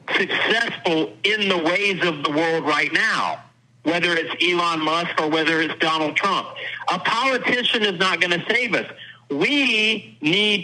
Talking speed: 160 wpm